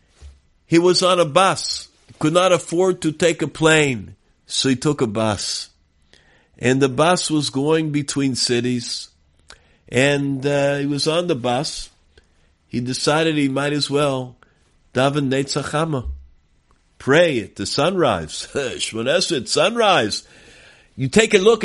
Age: 50-69